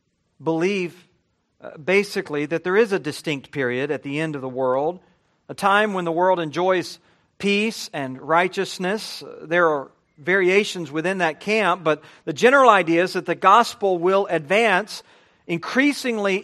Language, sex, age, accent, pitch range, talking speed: English, male, 40-59, American, 175-225 Hz, 145 wpm